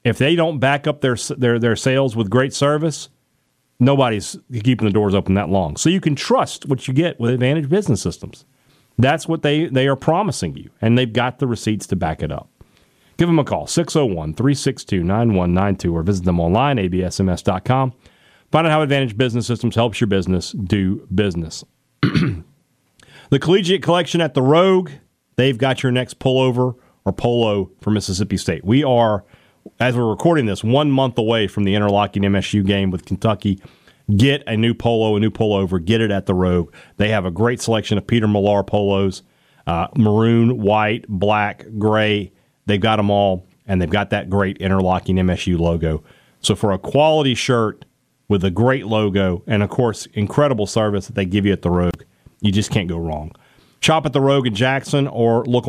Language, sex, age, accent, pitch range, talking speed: English, male, 40-59, American, 100-135 Hz, 185 wpm